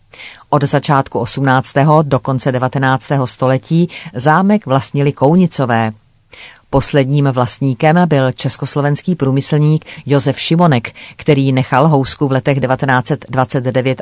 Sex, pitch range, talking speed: female, 130-155 Hz, 100 wpm